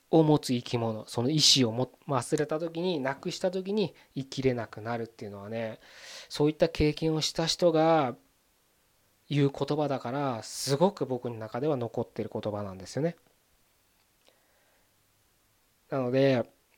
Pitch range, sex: 130-190 Hz, male